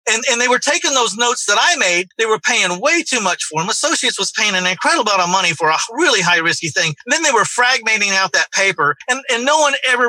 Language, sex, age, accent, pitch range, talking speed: English, male, 40-59, American, 165-220 Hz, 270 wpm